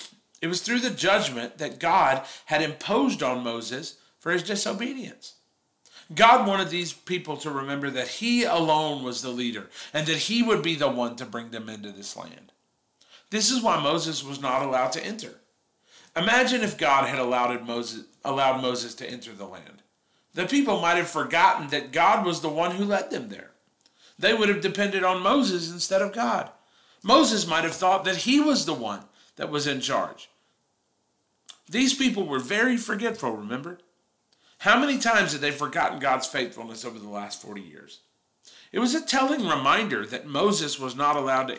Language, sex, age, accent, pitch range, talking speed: English, male, 40-59, American, 130-210 Hz, 175 wpm